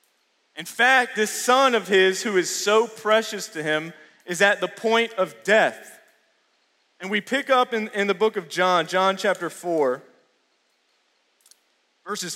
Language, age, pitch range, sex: English, 30-49, 170-220 Hz, male